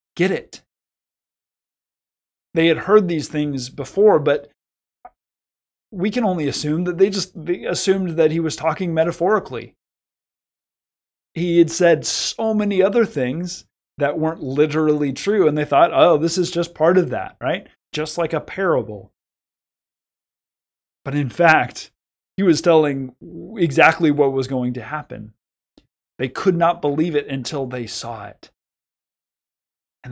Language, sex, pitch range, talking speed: English, male, 120-165 Hz, 140 wpm